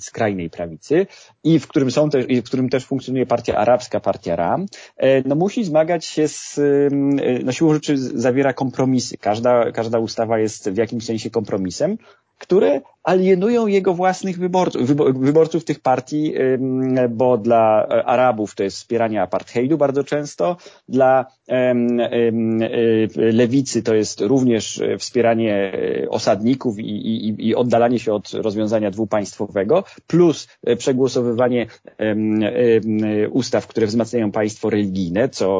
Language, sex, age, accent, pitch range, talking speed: Polish, male, 30-49, native, 110-140 Hz, 135 wpm